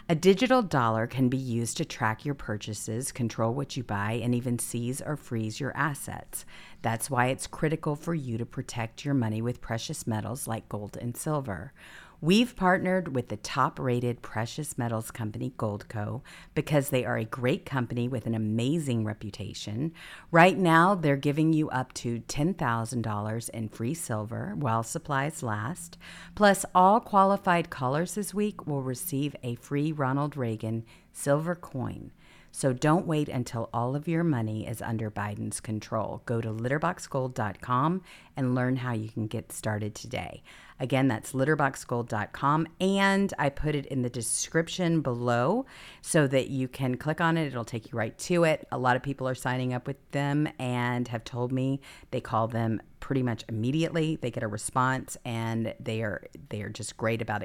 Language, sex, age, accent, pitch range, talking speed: English, female, 50-69, American, 115-150 Hz, 170 wpm